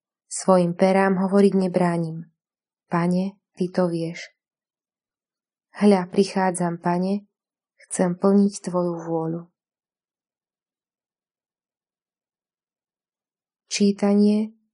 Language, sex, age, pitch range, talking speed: Slovak, female, 20-39, 180-205 Hz, 65 wpm